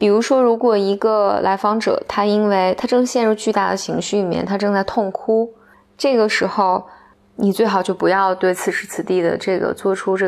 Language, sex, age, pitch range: Chinese, female, 20-39, 190-220 Hz